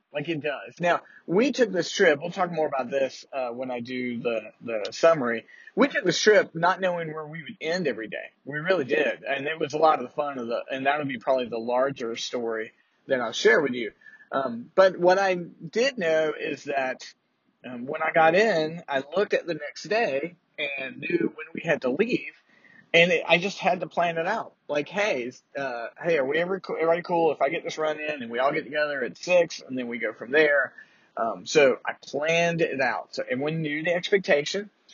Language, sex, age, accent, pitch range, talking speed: English, male, 40-59, American, 140-185 Hz, 225 wpm